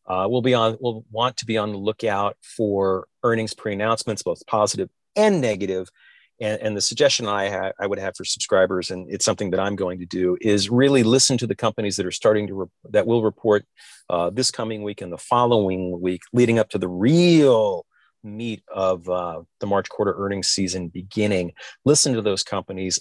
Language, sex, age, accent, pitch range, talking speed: English, male, 40-59, American, 95-115 Hz, 200 wpm